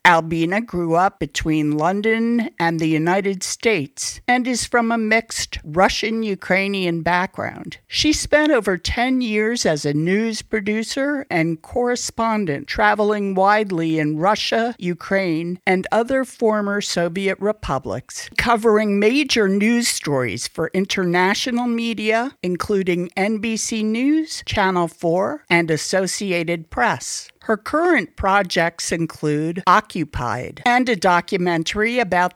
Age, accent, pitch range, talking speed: 50-69, American, 175-225 Hz, 115 wpm